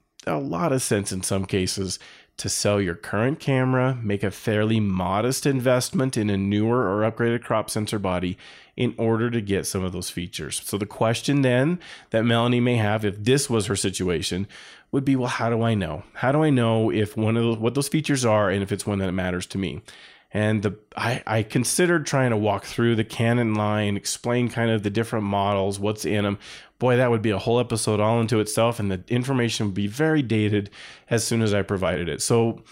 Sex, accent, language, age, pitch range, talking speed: male, American, English, 30-49, 100-125 Hz, 215 wpm